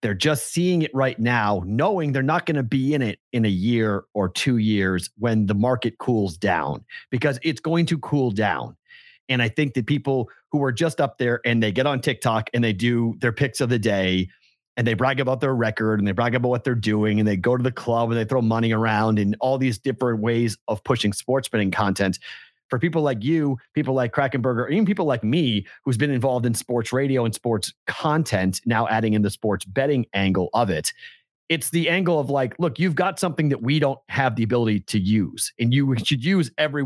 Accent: American